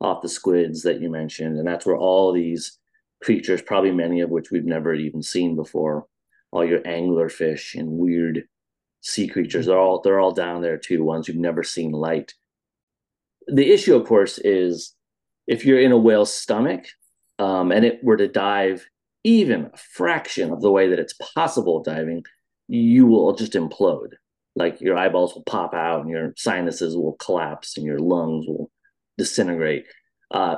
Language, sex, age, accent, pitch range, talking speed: English, male, 30-49, American, 85-130 Hz, 170 wpm